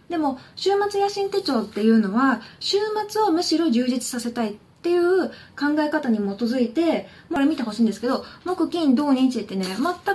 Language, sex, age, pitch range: Japanese, female, 20-39, 220-345 Hz